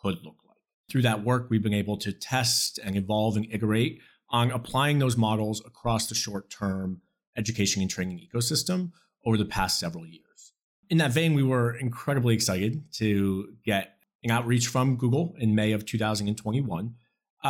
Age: 30-49